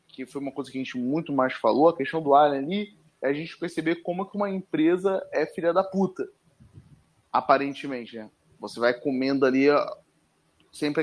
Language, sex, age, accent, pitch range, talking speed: Portuguese, male, 20-39, Brazilian, 140-190 Hz, 190 wpm